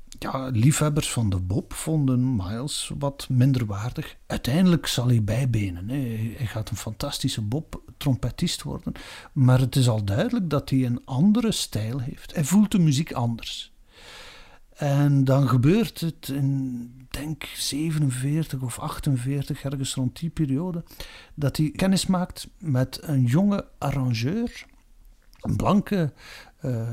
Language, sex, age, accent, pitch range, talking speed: Dutch, male, 50-69, Dutch, 120-150 Hz, 135 wpm